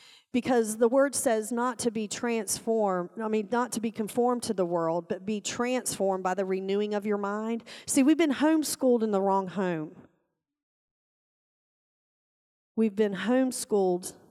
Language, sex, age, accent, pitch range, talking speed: English, female, 40-59, American, 175-215 Hz, 155 wpm